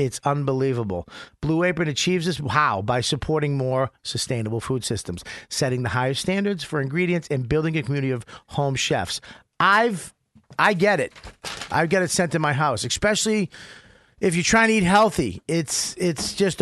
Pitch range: 135-180 Hz